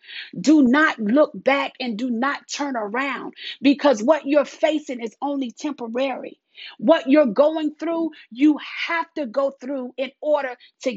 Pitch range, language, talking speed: 255-310 Hz, English, 155 wpm